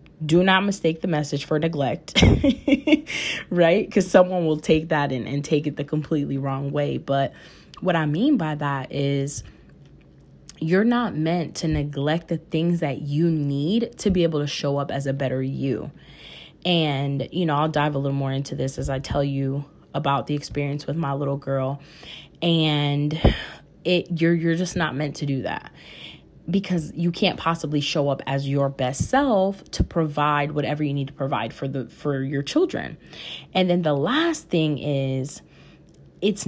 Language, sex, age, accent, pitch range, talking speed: English, female, 20-39, American, 140-175 Hz, 180 wpm